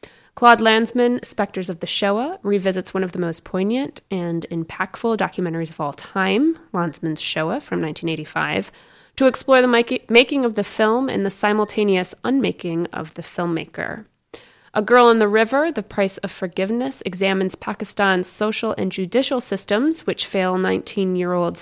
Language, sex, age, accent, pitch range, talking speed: English, female, 20-39, American, 175-225 Hz, 150 wpm